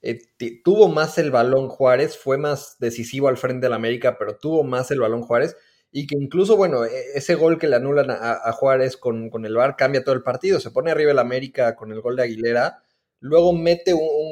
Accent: Mexican